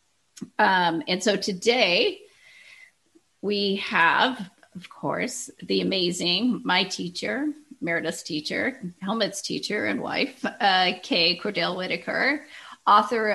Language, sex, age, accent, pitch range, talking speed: English, female, 40-59, American, 185-230 Hz, 100 wpm